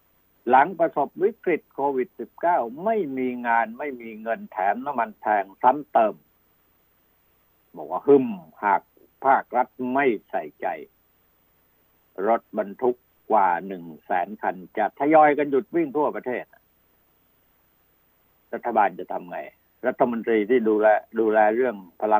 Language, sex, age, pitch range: Thai, male, 60-79, 85-130 Hz